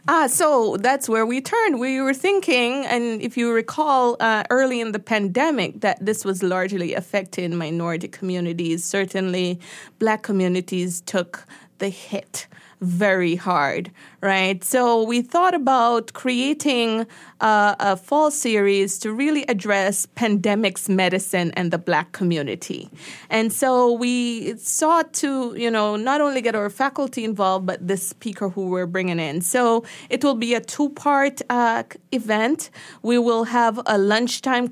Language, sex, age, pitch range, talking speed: English, female, 20-39, 195-250 Hz, 150 wpm